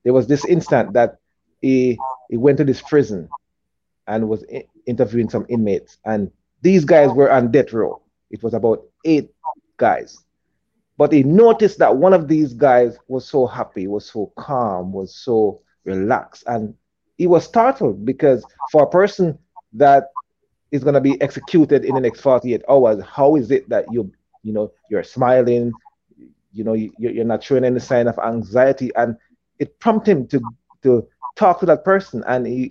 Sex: male